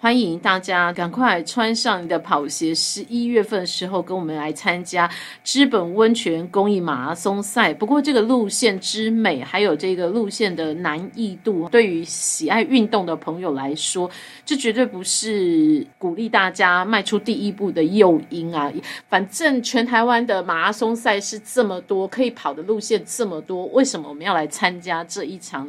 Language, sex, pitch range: Chinese, female, 170-220 Hz